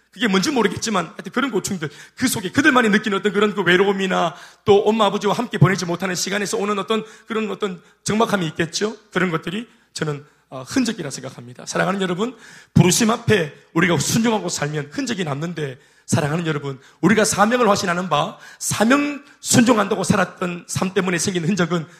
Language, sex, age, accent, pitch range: Korean, male, 30-49, native, 160-215 Hz